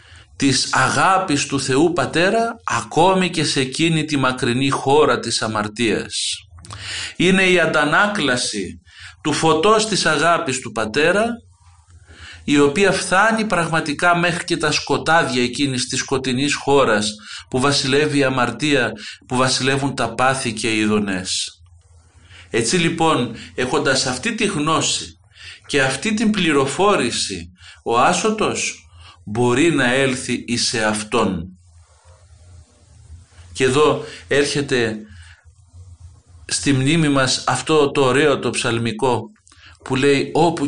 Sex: male